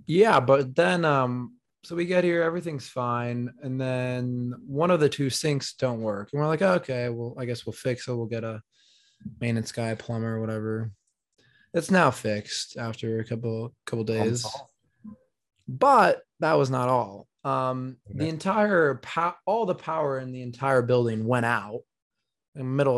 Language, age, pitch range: English, 20-39, 115-140 Hz